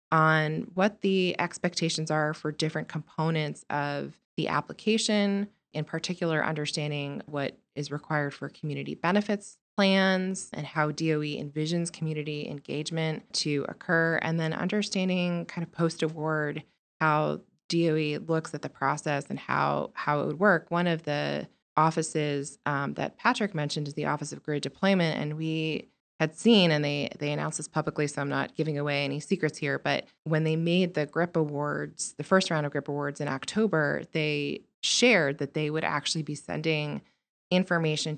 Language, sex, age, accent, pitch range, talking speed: English, female, 20-39, American, 145-170 Hz, 160 wpm